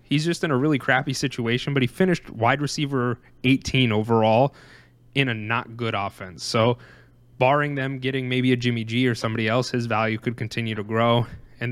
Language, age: English, 20-39